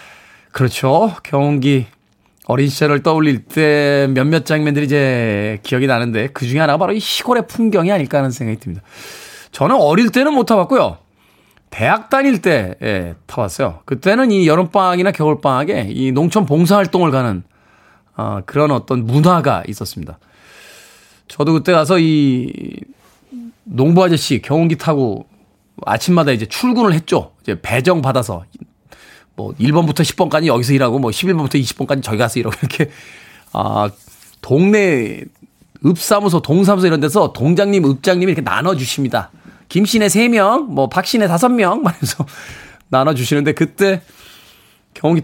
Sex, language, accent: male, Korean, native